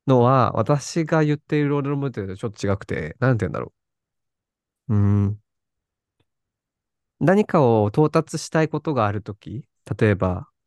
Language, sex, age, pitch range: Japanese, male, 20-39, 100-150 Hz